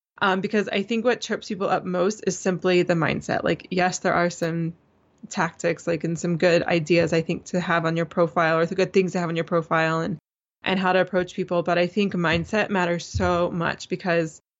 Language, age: English, 20-39